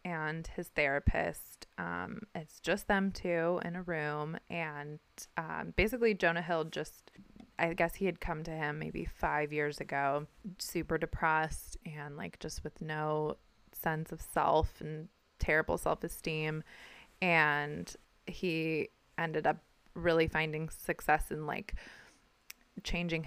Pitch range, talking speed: 155-180 Hz, 130 wpm